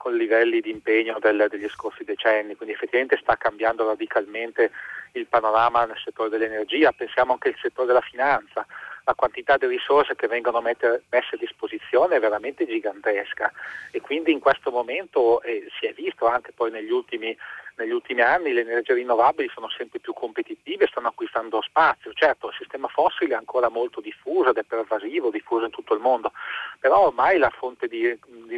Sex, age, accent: male, 40-59, native